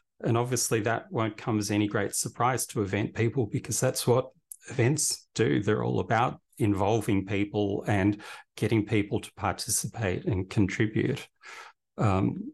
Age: 40-59